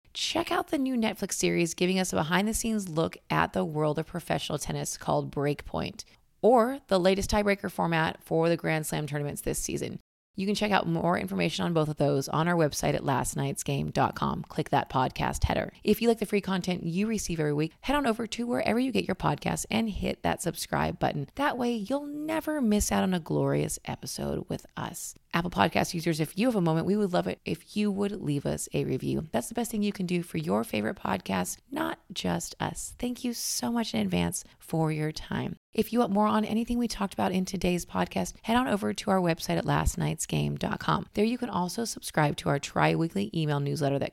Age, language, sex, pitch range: 30-49, English, female, 155-215 Hz